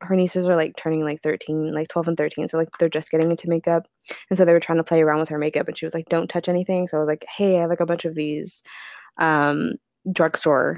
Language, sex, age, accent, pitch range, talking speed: English, female, 20-39, American, 165-200 Hz, 280 wpm